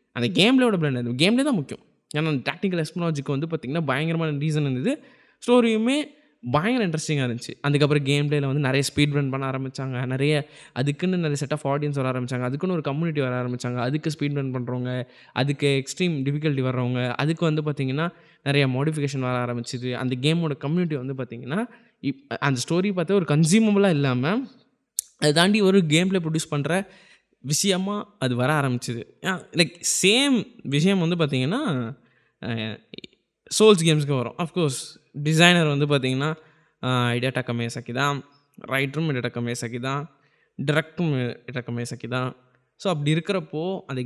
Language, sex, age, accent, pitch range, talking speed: Tamil, male, 20-39, native, 130-170 Hz, 145 wpm